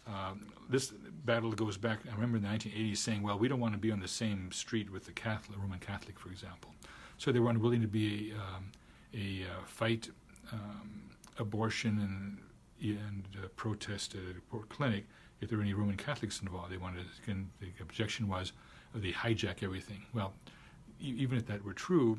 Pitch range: 95-115 Hz